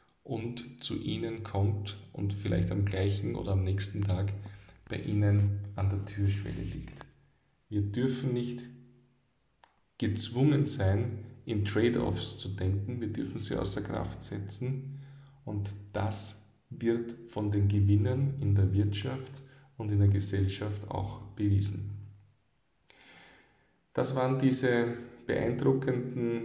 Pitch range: 100-125 Hz